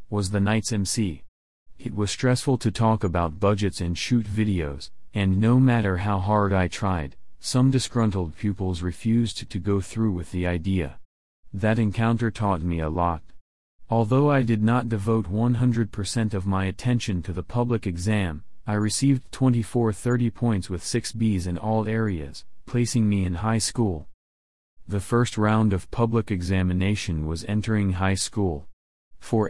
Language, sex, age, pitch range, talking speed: English, male, 40-59, 90-115 Hz, 155 wpm